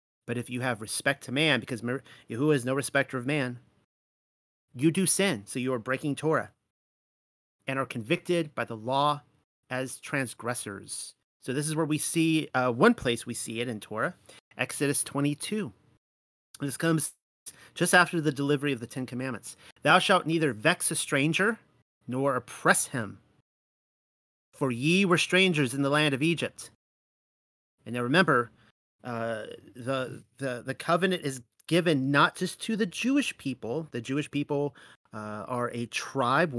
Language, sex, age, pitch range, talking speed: English, male, 30-49, 120-155 Hz, 160 wpm